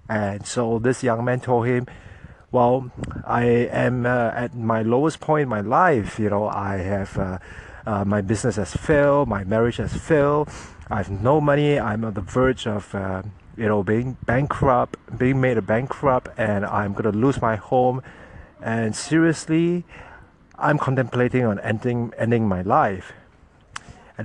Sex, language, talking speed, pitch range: male, English, 165 wpm, 105-130 Hz